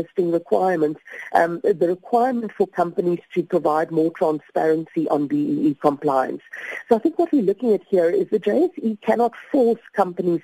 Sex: female